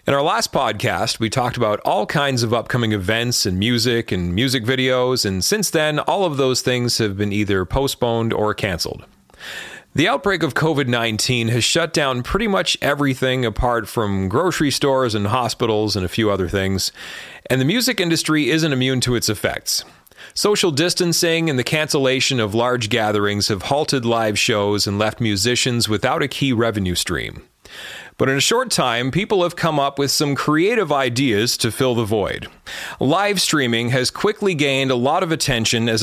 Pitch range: 110-150 Hz